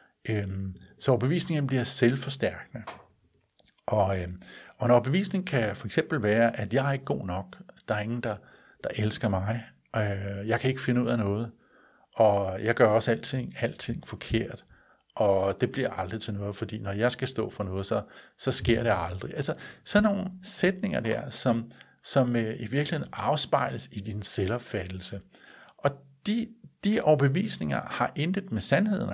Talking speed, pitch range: 160 wpm, 110-140 Hz